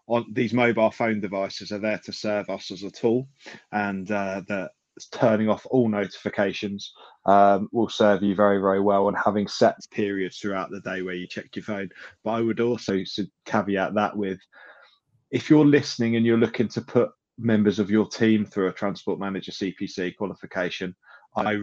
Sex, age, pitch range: male, 20-39, 100-110 Hz